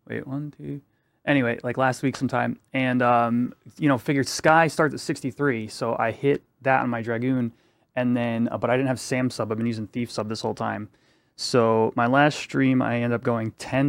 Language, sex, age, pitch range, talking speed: English, male, 30-49, 110-130 Hz, 215 wpm